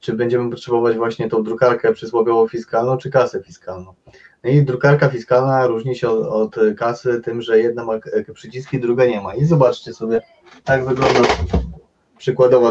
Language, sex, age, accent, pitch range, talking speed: Polish, male, 20-39, native, 115-140 Hz, 160 wpm